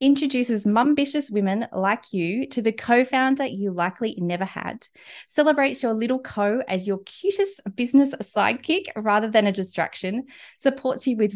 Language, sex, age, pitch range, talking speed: English, female, 30-49, 190-265 Hz, 150 wpm